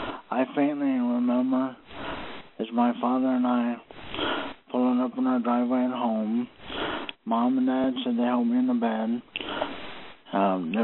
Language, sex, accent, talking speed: English, male, American, 150 wpm